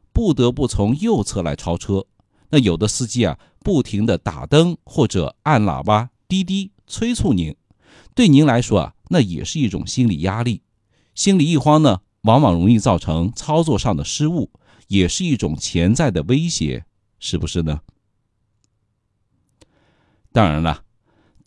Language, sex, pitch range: Chinese, male, 90-135 Hz